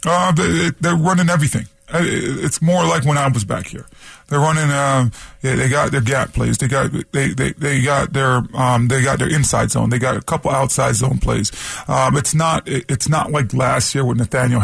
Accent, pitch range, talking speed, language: American, 125-165 Hz, 215 wpm, English